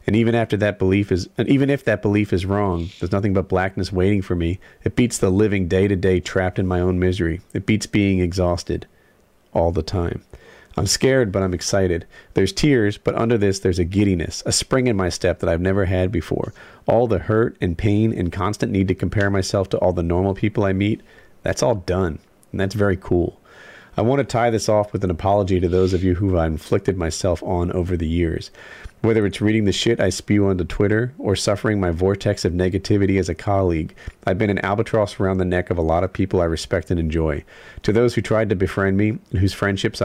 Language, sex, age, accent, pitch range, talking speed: English, male, 40-59, American, 90-105 Hz, 230 wpm